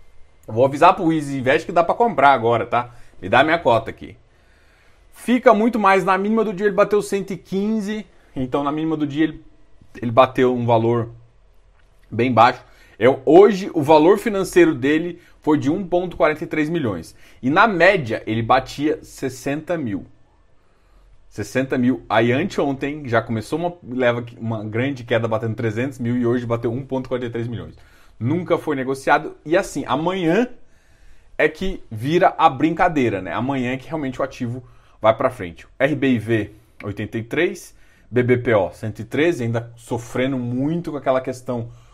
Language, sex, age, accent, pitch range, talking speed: Portuguese, male, 20-39, Brazilian, 115-175 Hz, 150 wpm